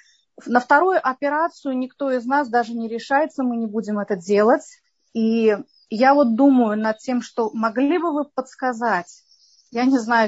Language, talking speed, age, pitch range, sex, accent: Russian, 165 wpm, 30-49, 220-275 Hz, female, native